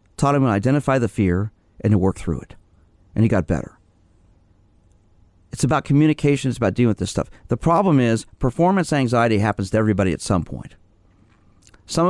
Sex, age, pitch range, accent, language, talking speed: male, 40-59, 95-115 Hz, American, English, 180 wpm